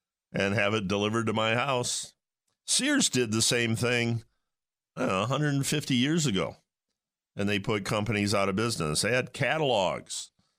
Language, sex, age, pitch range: English, male, 50-69, 105-140 Hz